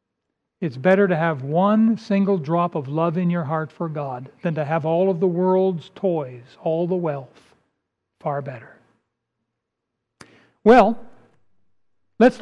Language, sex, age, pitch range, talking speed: English, male, 60-79, 170-210 Hz, 140 wpm